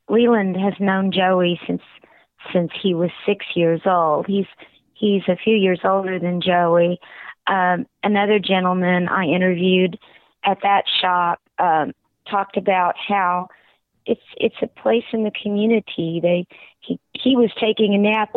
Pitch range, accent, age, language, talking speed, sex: 175-215 Hz, American, 40-59, English, 145 wpm, female